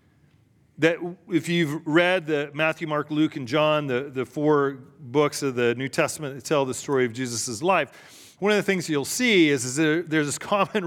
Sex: male